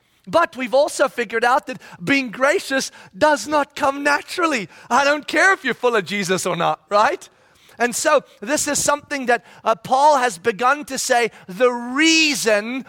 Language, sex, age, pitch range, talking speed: English, male, 30-49, 225-275 Hz, 170 wpm